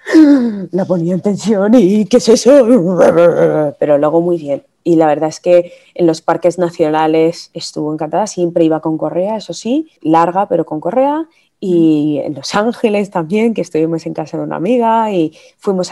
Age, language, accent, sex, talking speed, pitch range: 20-39, Spanish, Spanish, female, 175 wpm, 160-195 Hz